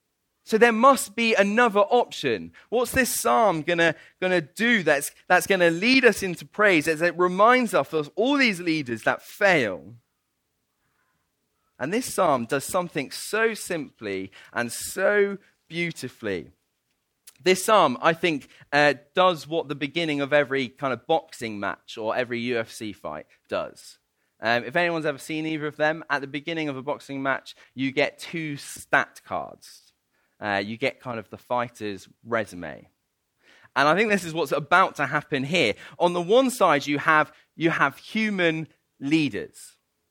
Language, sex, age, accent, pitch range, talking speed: English, male, 30-49, British, 135-190 Hz, 160 wpm